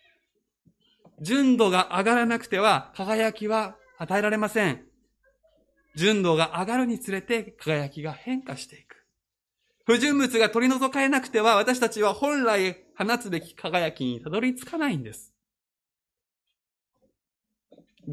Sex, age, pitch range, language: male, 20-39, 150-235 Hz, Japanese